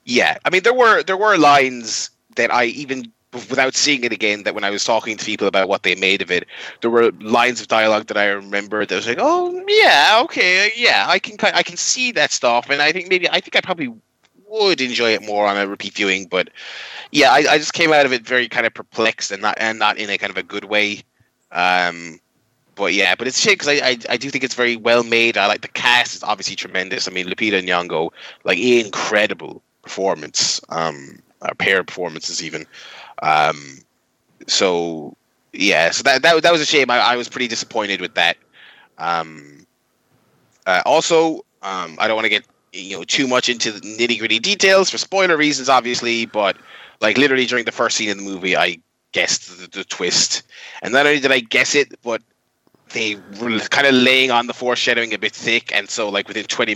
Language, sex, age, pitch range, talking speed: English, male, 20-39, 105-145 Hz, 215 wpm